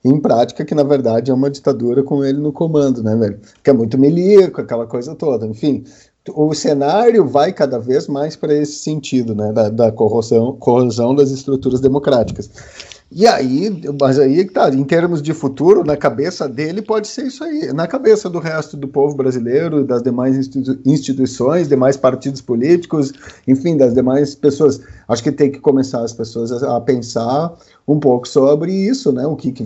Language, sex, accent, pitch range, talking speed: Portuguese, male, Brazilian, 125-150 Hz, 180 wpm